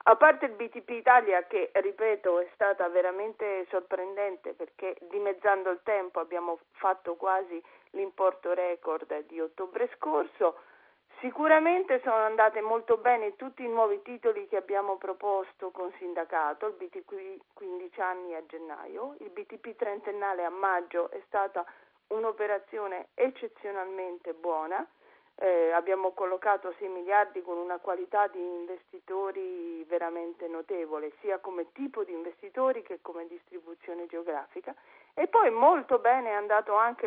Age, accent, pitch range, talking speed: 40-59, native, 180-240 Hz, 130 wpm